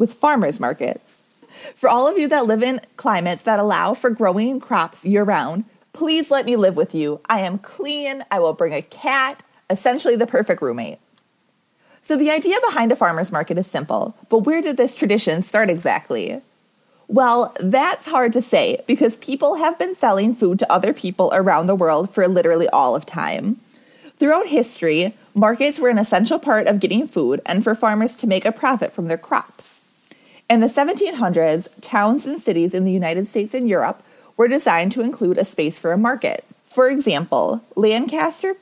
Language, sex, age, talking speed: English, female, 30-49, 185 wpm